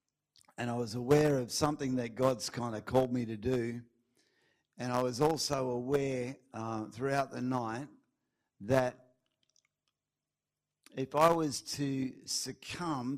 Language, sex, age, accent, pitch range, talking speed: English, male, 50-69, Australian, 120-145 Hz, 130 wpm